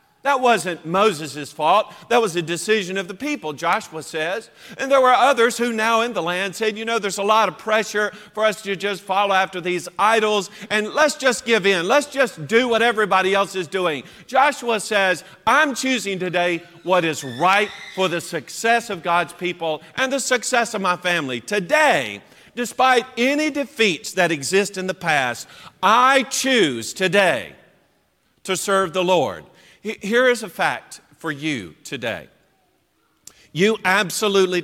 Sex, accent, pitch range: male, American, 160-225 Hz